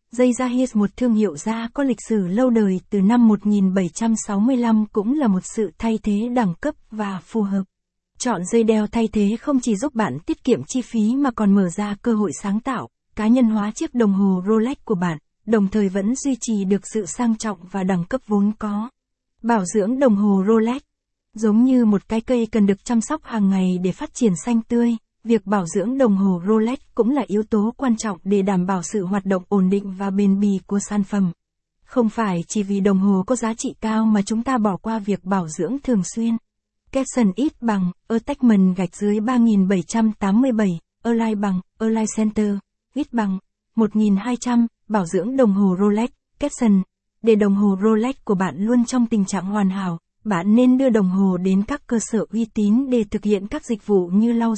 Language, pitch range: Vietnamese, 200-235 Hz